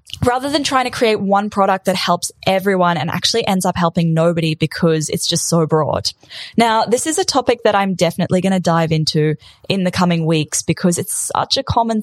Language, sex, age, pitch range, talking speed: English, female, 10-29, 170-235 Hz, 210 wpm